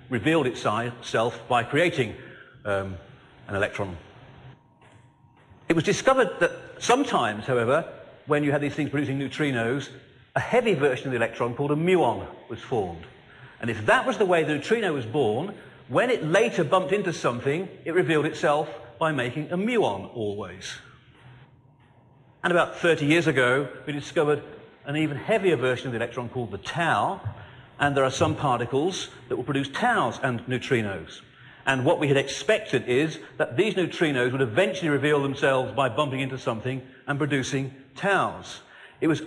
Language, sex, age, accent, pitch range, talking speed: English, male, 40-59, British, 130-170 Hz, 160 wpm